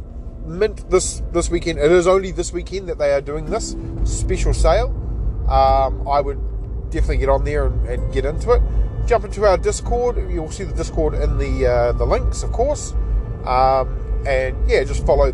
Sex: male